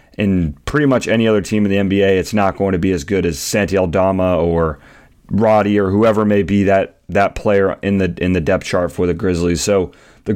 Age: 30-49